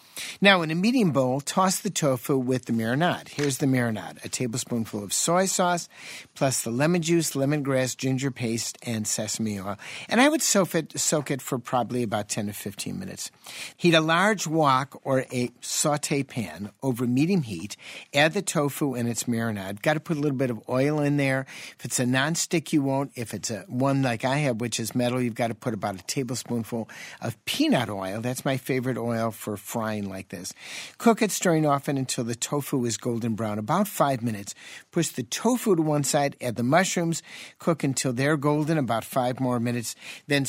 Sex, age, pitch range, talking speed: male, 50-69, 120-155 Hz, 200 wpm